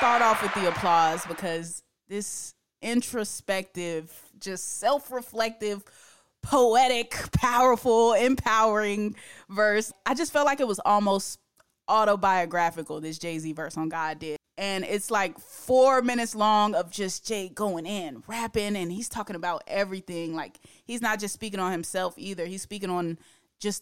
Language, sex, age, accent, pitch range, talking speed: English, female, 20-39, American, 175-210 Hz, 145 wpm